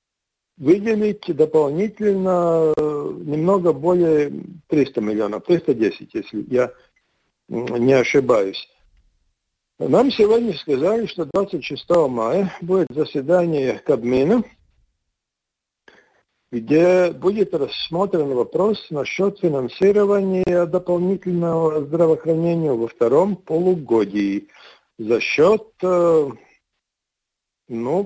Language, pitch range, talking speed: Russian, 130-190 Hz, 75 wpm